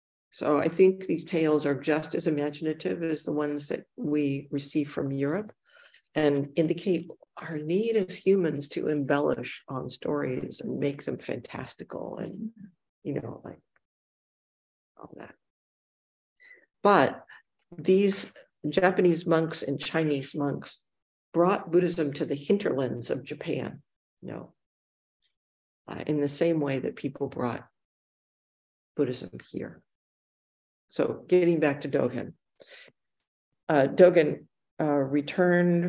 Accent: American